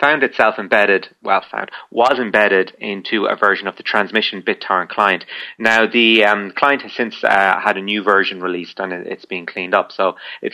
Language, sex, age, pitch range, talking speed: English, male, 30-49, 100-125 Hz, 195 wpm